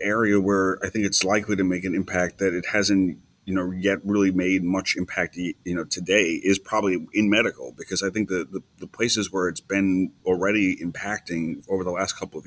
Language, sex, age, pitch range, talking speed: English, male, 30-49, 85-100 Hz, 205 wpm